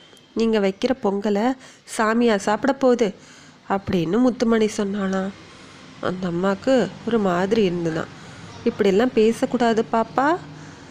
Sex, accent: female, native